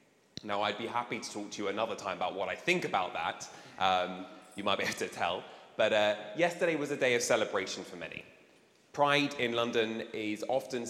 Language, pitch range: English, 100-115 Hz